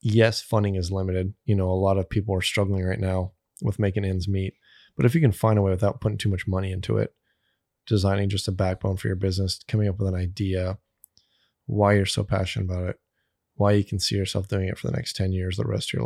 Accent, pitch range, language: American, 95-110 Hz, English